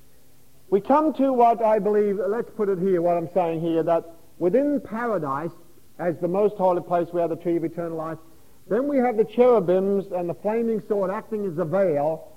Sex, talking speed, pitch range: male, 205 wpm, 165-215 Hz